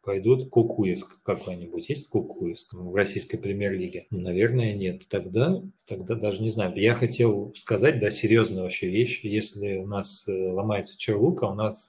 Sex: male